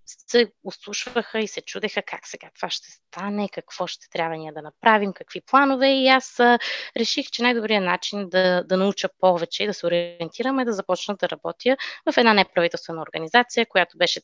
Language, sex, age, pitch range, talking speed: Bulgarian, female, 20-39, 175-235 Hz, 185 wpm